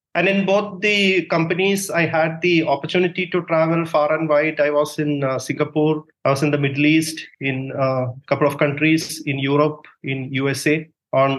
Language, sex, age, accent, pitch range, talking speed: English, male, 30-49, Indian, 135-160 Hz, 190 wpm